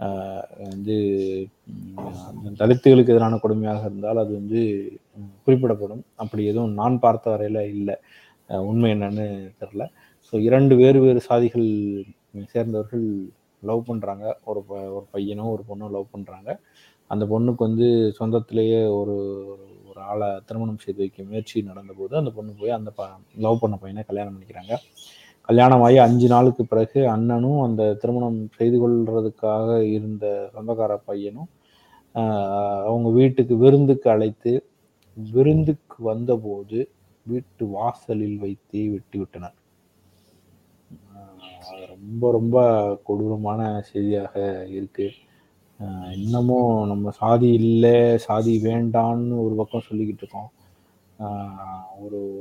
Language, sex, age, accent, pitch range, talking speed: Tamil, male, 20-39, native, 100-115 Hz, 105 wpm